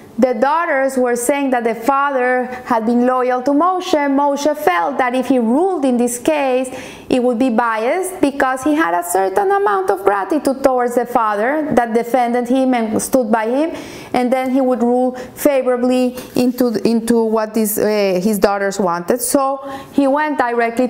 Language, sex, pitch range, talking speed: English, female, 225-275 Hz, 175 wpm